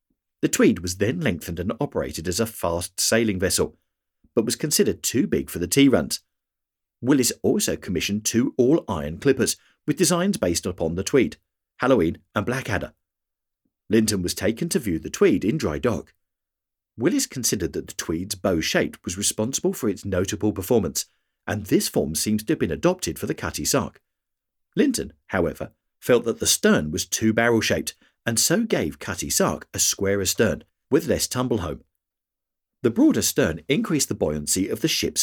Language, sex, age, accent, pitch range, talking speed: English, male, 50-69, British, 90-115 Hz, 170 wpm